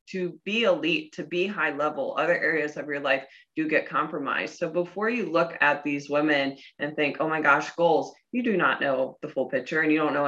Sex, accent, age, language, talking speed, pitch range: female, American, 20-39, English, 230 wpm, 145-175 Hz